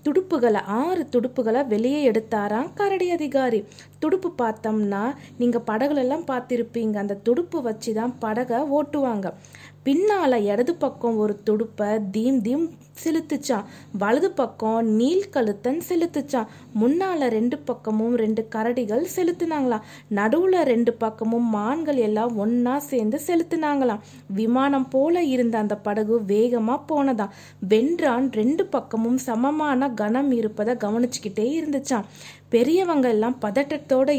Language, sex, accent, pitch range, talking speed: Tamil, female, native, 225-300 Hz, 110 wpm